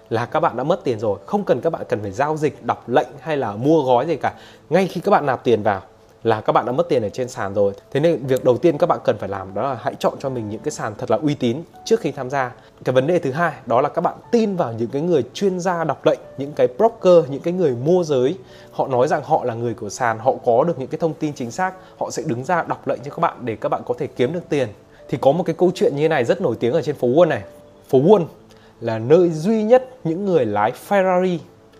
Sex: male